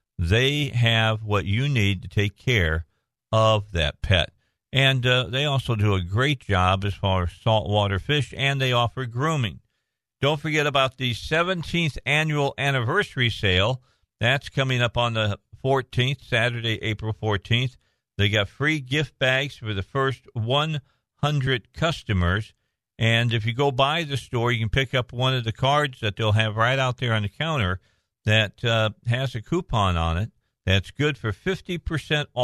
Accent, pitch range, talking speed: American, 110-140 Hz, 165 wpm